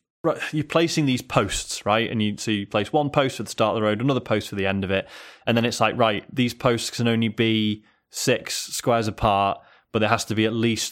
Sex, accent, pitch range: male, British, 100-130 Hz